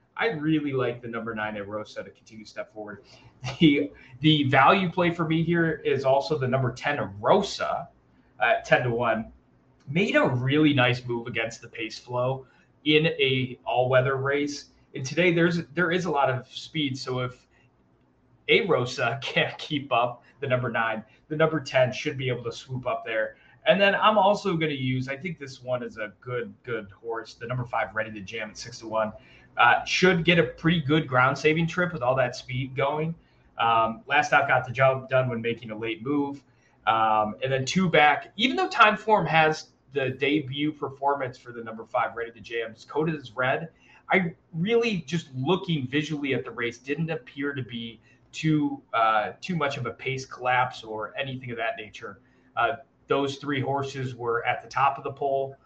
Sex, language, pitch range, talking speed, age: male, English, 120-155 Hz, 195 wpm, 20-39